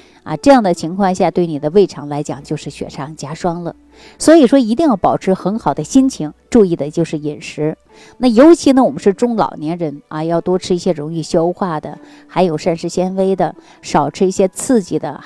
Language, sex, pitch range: Chinese, female, 155-220 Hz